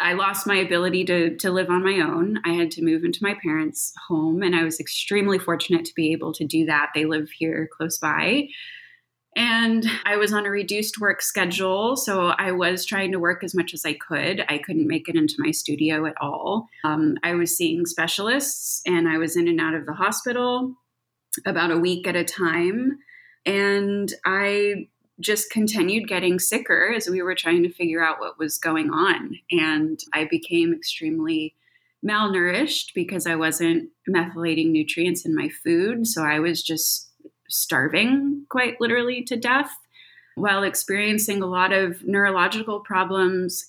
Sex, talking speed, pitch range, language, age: female, 175 wpm, 165-225 Hz, English, 20-39